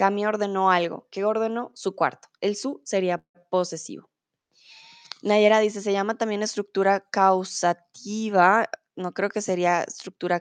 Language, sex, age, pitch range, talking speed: Spanish, female, 20-39, 170-210 Hz, 135 wpm